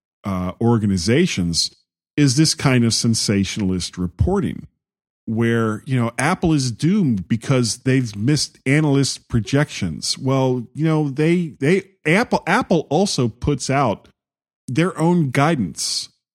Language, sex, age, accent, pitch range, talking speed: English, male, 40-59, American, 100-140 Hz, 115 wpm